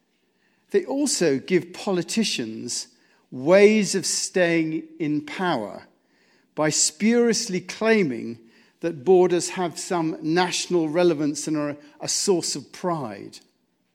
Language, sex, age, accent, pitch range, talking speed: English, male, 50-69, British, 140-210 Hz, 105 wpm